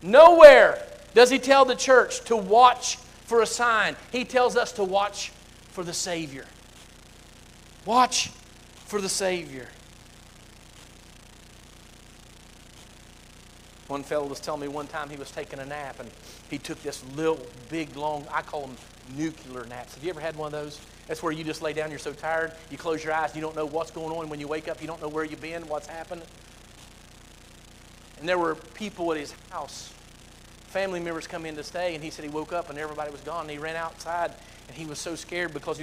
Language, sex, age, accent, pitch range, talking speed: English, male, 40-59, American, 140-180 Hz, 200 wpm